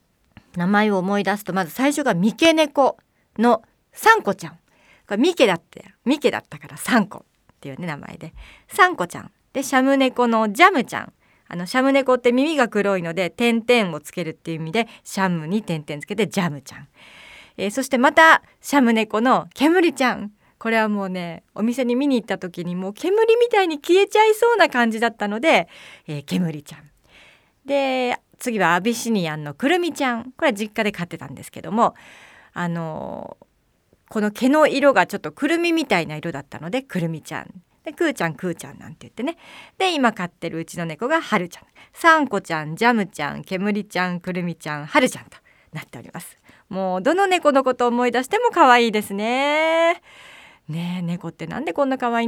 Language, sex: Japanese, female